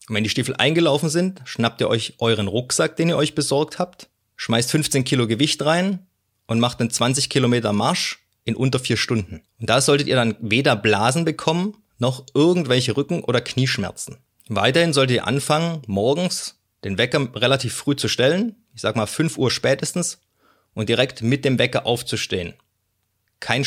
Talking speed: 170 wpm